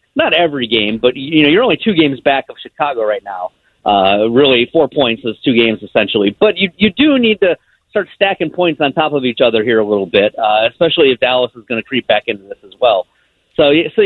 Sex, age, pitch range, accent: male, 40-59, 135-185 Hz, American